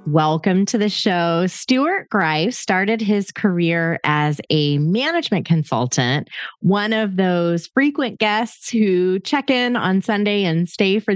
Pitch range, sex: 155-210 Hz, female